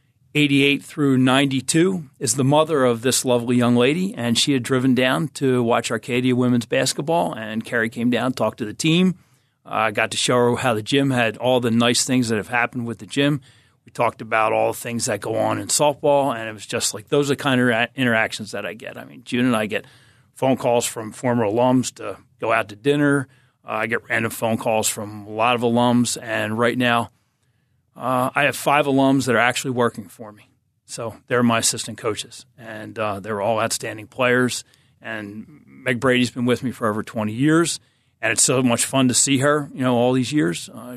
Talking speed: 220 wpm